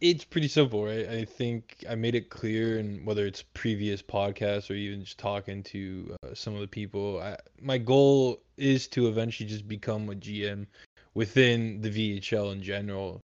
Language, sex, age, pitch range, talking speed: English, male, 20-39, 100-115 Hz, 170 wpm